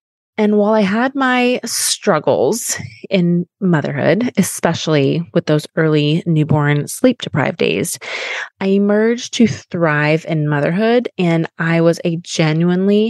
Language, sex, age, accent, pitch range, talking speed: English, female, 20-39, American, 160-205 Hz, 120 wpm